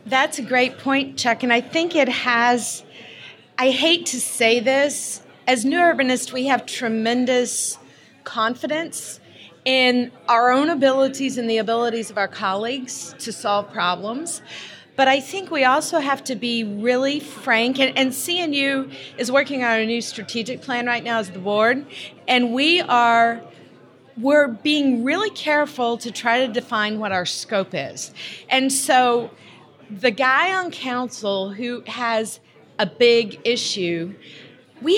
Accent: American